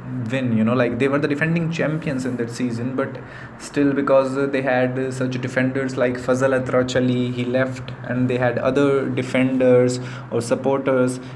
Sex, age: male, 20-39